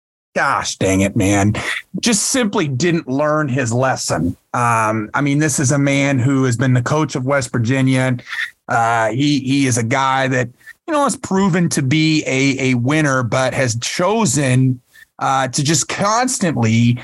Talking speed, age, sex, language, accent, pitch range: 170 wpm, 30-49, male, English, American, 130-175 Hz